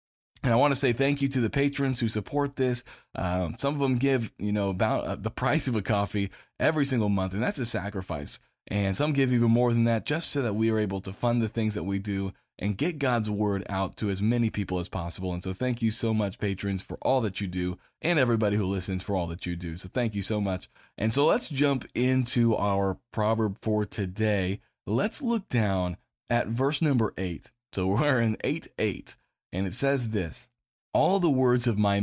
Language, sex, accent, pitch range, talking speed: English, male, American, 100-125 Hz, 225 wpm